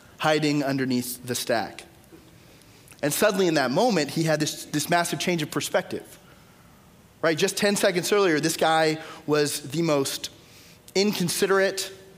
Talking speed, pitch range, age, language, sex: 140 wpm, 145-180 Hz, 20-39, English, male